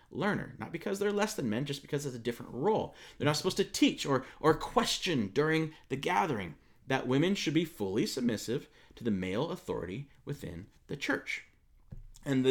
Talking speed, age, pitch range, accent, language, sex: 180 wpm, 40-59, 120-155 Hz, American, English, male